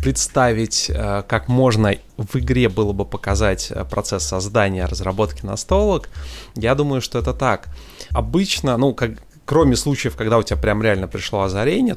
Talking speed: 145 wpm